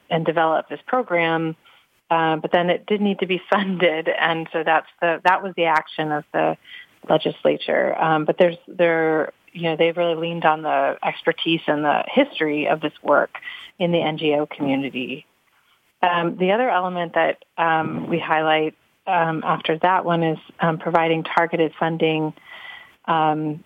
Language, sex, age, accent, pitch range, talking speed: English, female, 30-49, American, 160-195 Hz, 160 wpm